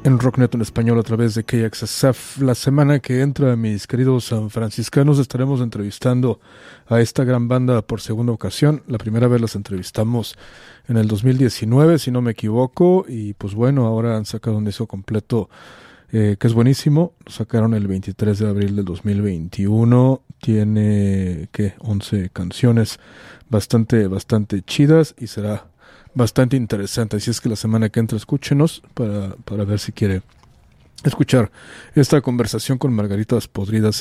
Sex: male